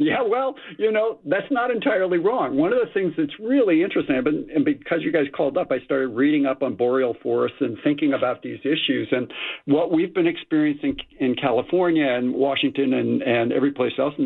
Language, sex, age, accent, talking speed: English, male, 60-79, American, 200 wpm